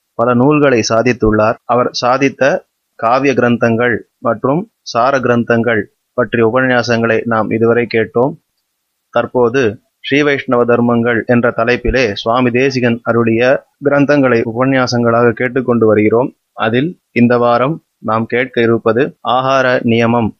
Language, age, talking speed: Tamil, 30-49, 105 wpm